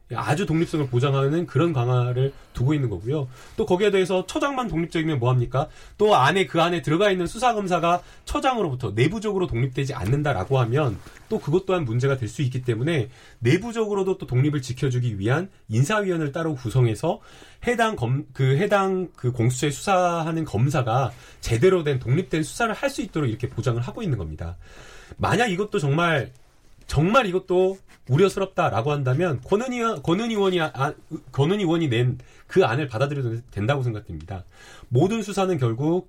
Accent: native